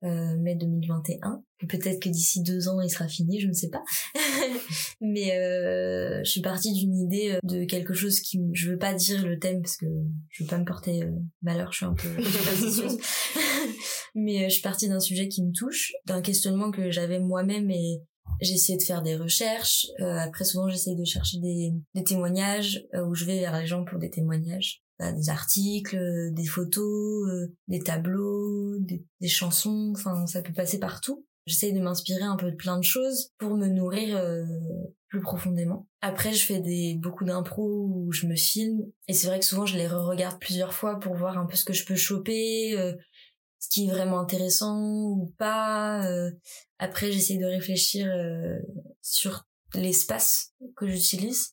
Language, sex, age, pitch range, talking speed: French, female, 20-39, 175-200 Hz, 190 wpm